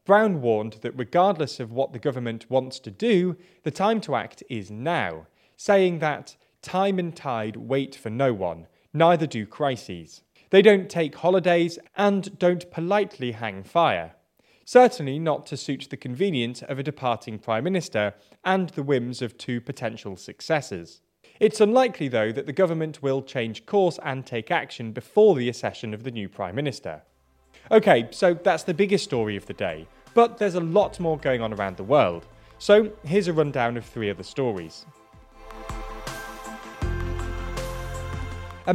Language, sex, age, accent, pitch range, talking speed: English, male, 30-49, British, 110-175 Hz, 160 wpm